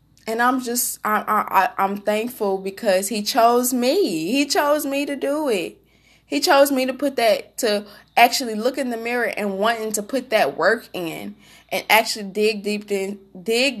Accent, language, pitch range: American, English, 185-225 Hz